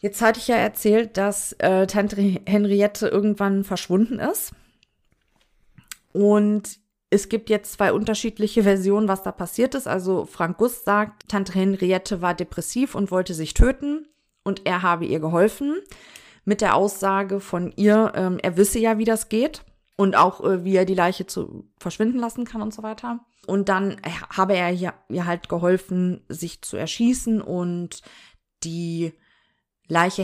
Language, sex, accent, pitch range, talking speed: German, female, German, 180-220 Hz, 160 wpm